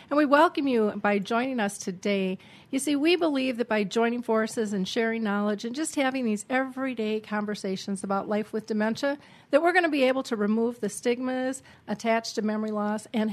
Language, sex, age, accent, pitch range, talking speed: English, female, 40-59, American, 200-245 Hz, 200 wpm